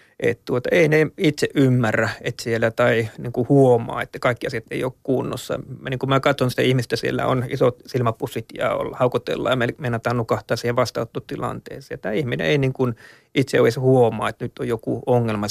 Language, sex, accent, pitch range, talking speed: Finnish, male, native, 120-145 Hz, 185 wpm